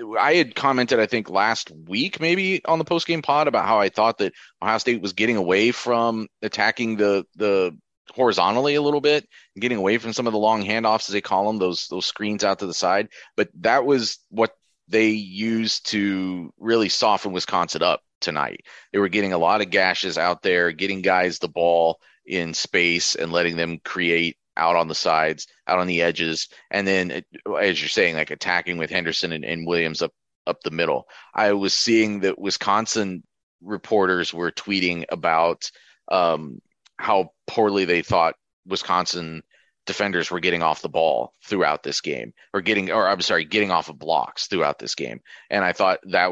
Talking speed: 185 wpm